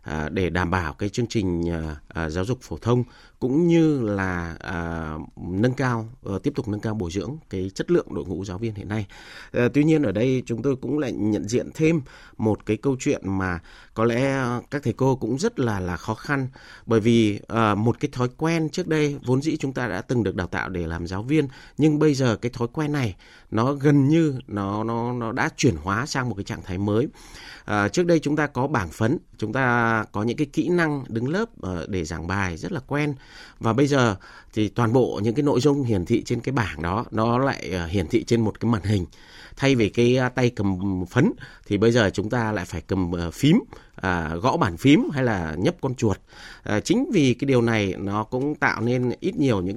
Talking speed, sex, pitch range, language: 220 wpm, male, 100-135 Hz, Vietnamese